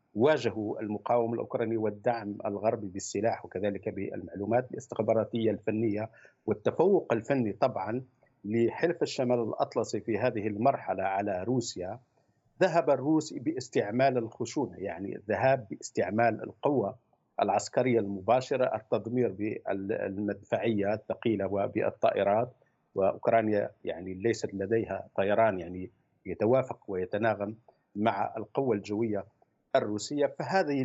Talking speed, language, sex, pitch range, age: 95 wpm, Arabic, male, 105-135 Hz, 50-69